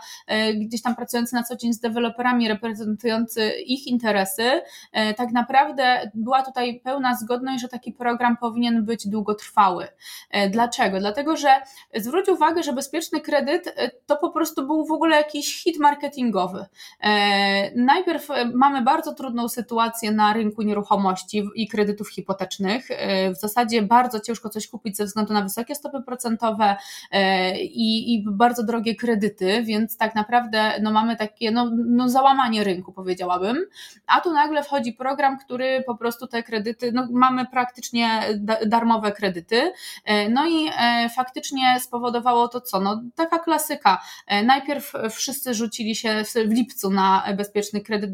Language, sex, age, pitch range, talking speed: Polish, female, 20-39, 210-255 Hz, 140 wpm